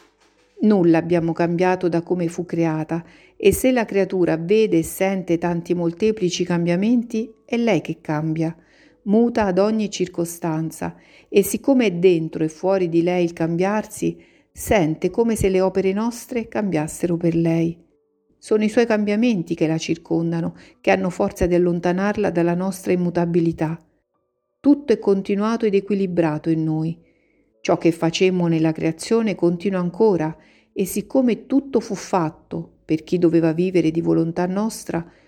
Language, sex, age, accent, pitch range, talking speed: Italian, female, 50-69, native, 165-210 Hz, 145 wpm